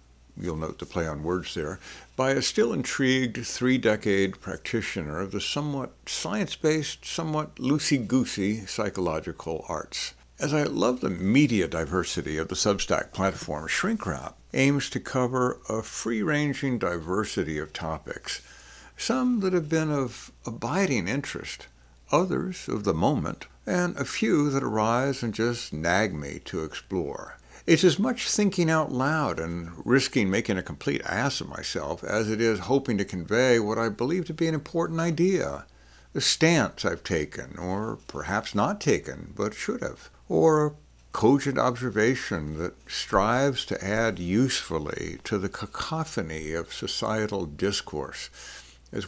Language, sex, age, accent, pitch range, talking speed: English, male, 60-79, American, 95-145 Hz, 140 wpm